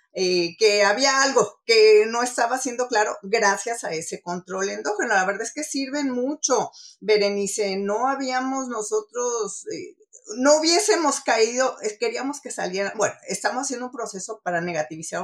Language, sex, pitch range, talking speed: Spanish, female, 185-250 Hz, 155 wpm